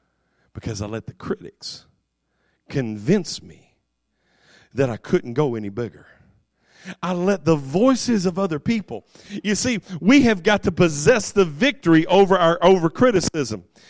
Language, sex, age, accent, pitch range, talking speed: English, male, 40-59, American, 150-210 Hz, 140 wpm